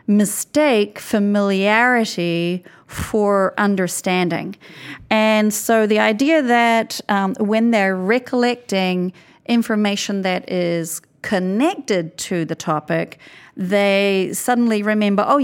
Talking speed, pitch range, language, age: 95 wpm, 175-215 Hz, English, 40-59